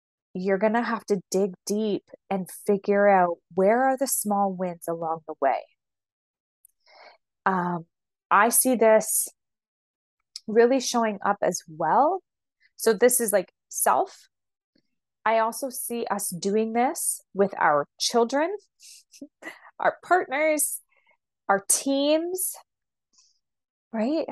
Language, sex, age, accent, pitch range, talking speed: English, female, 20-39, American, 200-250 Hz, 115 wpm